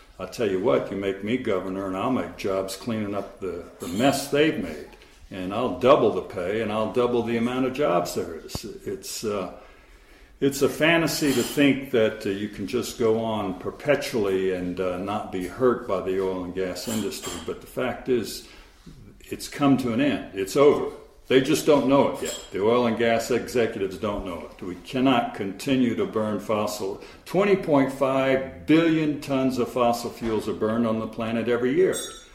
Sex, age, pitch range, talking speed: male, 60-79, 105-135 Hz, 190 wpm